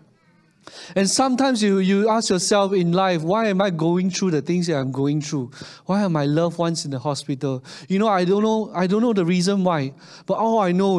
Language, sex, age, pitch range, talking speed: English, male, 30-49, 160-195 Hz, 230 wpm